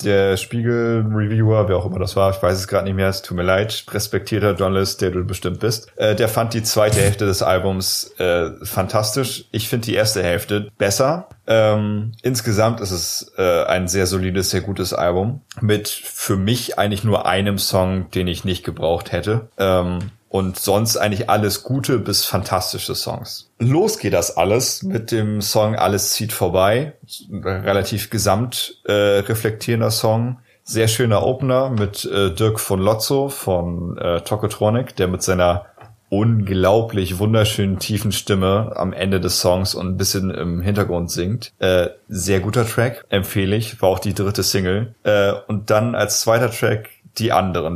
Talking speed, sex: 165 wpm, male